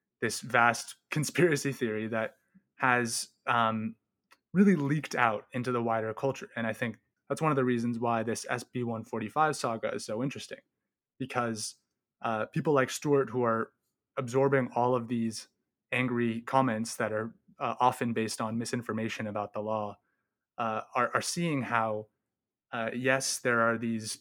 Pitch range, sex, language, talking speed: 115-135 Hz, male, English, 155 wpm